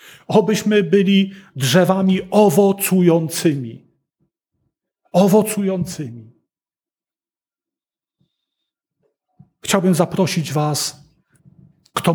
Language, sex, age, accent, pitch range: Polish, male, 40-59, native, 150-205 Hz